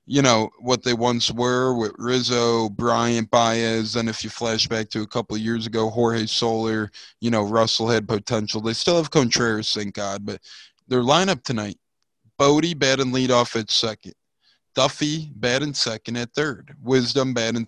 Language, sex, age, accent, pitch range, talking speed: English, male, 20-39, American, 115-145 Hz, 170 wpm